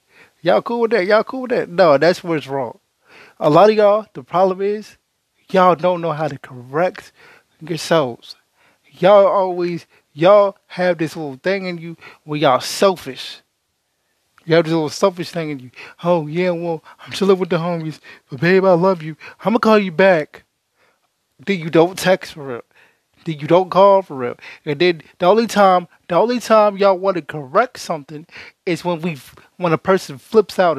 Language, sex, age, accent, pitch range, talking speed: English, male, 20-39, American, 160-195 Hz, 195 wpm